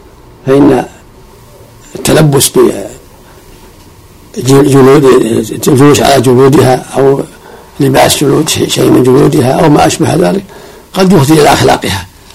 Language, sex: Arabic, male